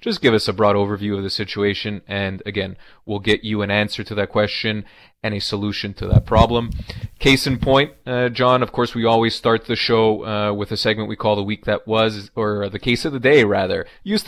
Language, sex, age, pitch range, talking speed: English, male, 30-49, 105-120 Hz, 230 wpm